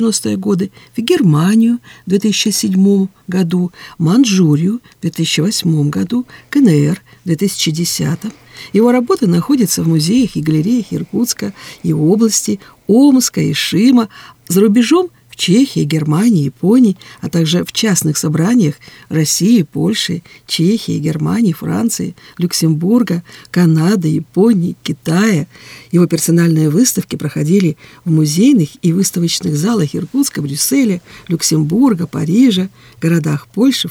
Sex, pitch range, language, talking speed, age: female, 160-215 Hz, Russian, 110 wpm, 50-69